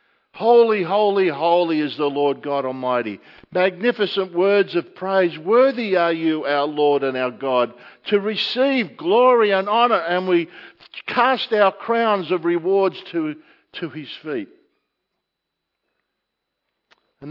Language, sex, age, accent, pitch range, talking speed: English, male, 50-69, Australian, 160-210 Hz, 130 wpm